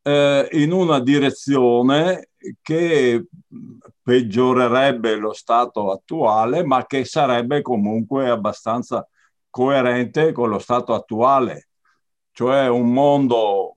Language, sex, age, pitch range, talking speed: Italian, male, 60-79, 120-160 Hz, 90 wpm